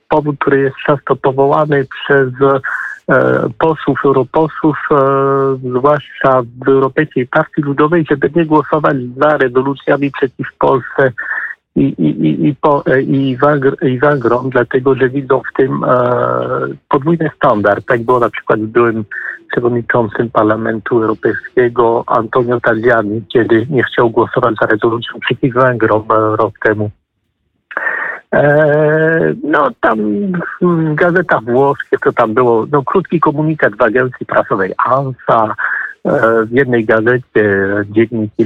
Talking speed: 125 wpm